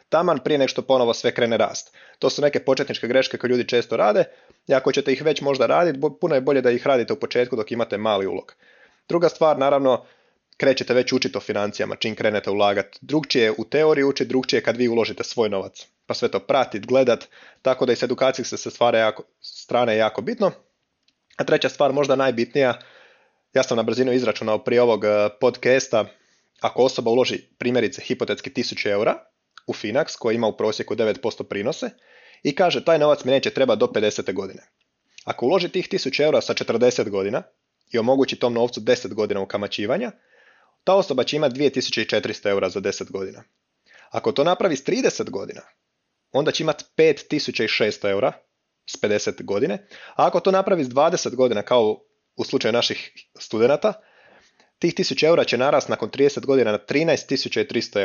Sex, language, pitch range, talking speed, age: male, Croatian, 120-145 Hz, 175 wpm, 30-49